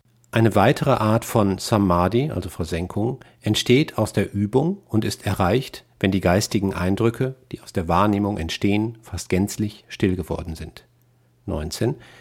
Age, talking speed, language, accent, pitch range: 50-69, 145 wpm, German, German, 95-120 Hz